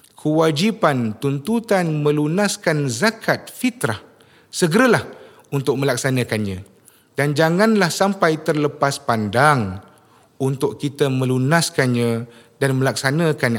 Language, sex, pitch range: English, male, 130-190 Hz